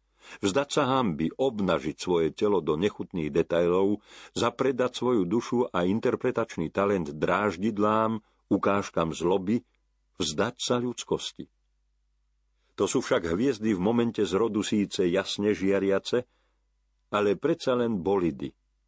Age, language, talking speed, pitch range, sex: 50-69, Slovak, 110 wpm, 80-115 Hz, male